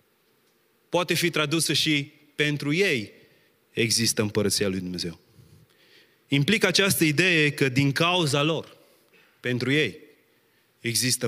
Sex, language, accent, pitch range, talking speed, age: male, Romanian, native, 115-155 Hz, 105 wpm, 20-39